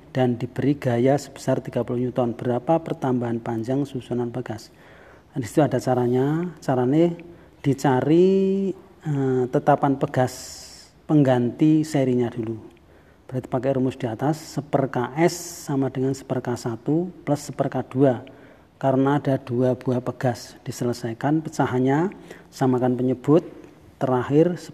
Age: 40-59